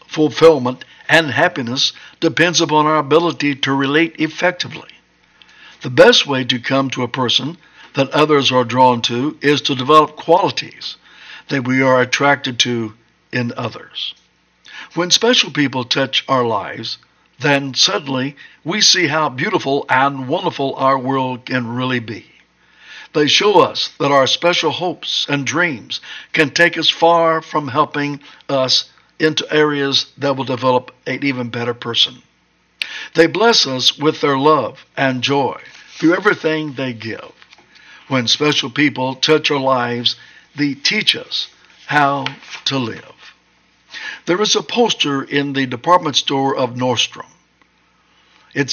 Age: 60-79